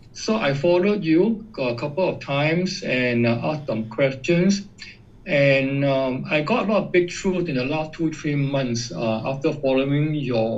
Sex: male